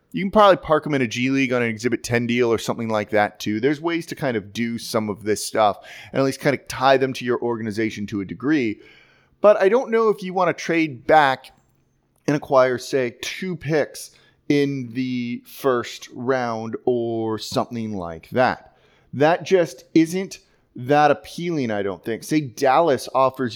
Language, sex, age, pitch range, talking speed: English, male, 30-49, 120-175 Hz, 195 wpm